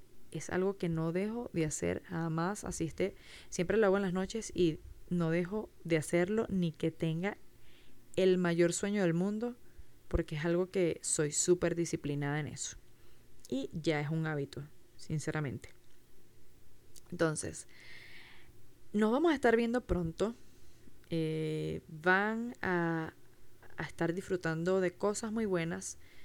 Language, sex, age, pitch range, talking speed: Spanish, female, 20-39, 160-195 Hz, 135 wpm